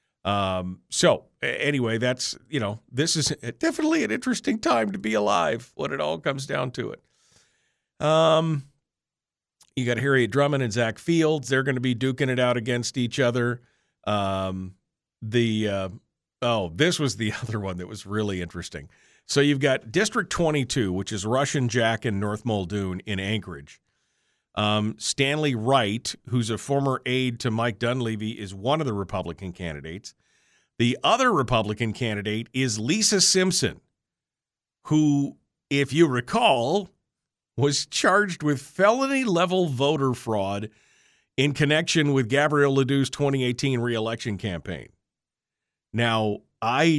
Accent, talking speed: American, 140 wpm